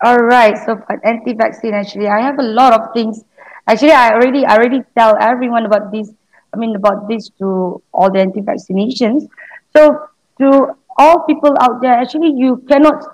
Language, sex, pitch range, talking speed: English, female, 220-275 Hz, 175 wpm